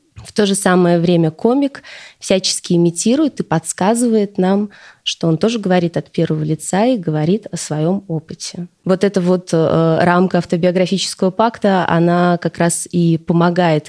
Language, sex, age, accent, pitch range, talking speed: Russian, female, 20-39, native, 170-210 Hz, 150 wpm